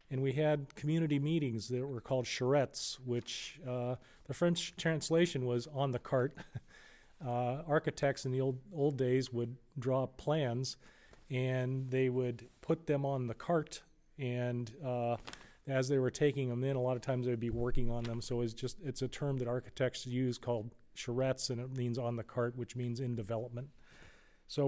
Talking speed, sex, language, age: 180 wpm, male, English, 40-59